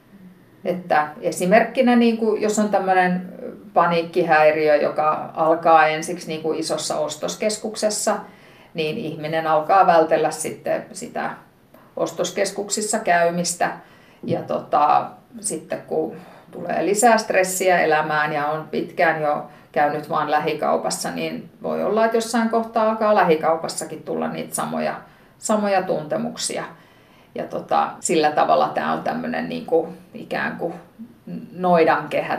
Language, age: Finnish, 50-69